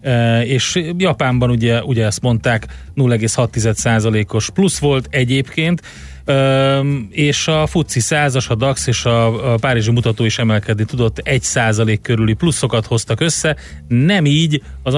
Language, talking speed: Hungarian, 125 wpm